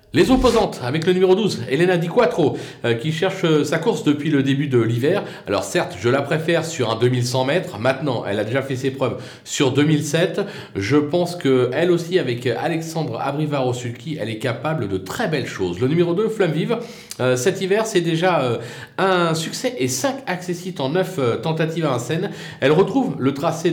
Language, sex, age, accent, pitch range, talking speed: French, male, 40-59, French, 125-175 Hz, 200 wpm